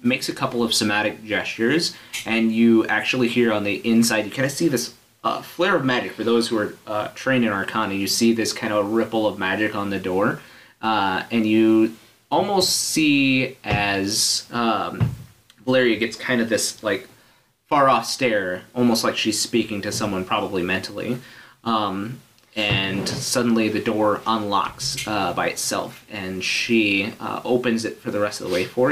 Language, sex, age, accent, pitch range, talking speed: English, male, 30-49, American, 105-125 Hz, 175 wpm